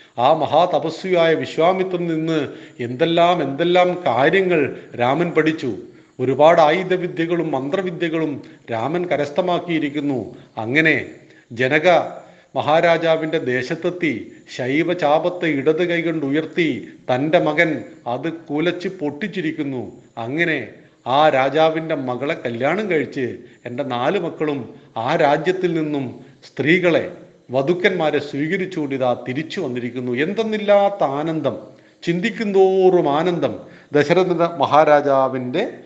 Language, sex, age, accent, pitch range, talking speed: Hindi, male, 40-59, native, 140-175 Hz, 70 wpm